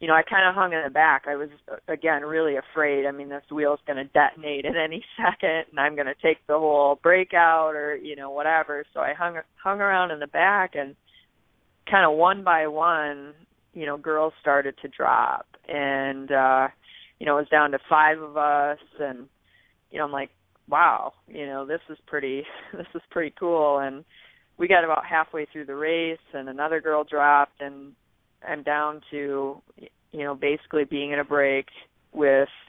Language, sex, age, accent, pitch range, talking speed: English, female, 20-39, American, 140-155 Hz, 195 wpm